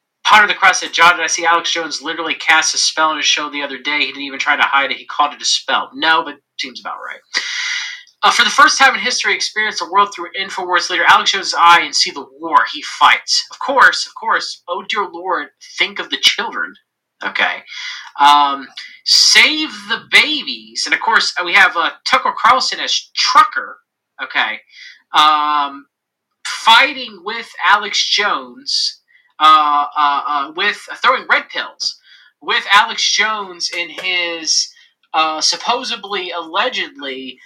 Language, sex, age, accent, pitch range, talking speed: English, male, 30-49, American, 160-265 Hz, 170 wpm